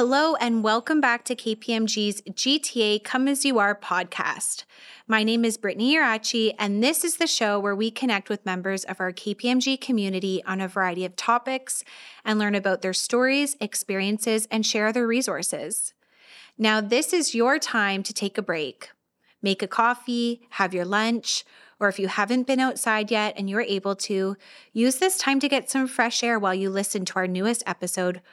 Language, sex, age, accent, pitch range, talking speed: English, female, 20-39, American, 195-245 Hz, 185 wpm